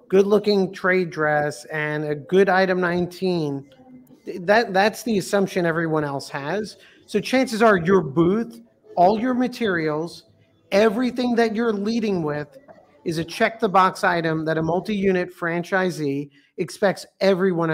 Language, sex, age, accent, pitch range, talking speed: English, male, 50-69, American, 165-200 Hz, 140 wpm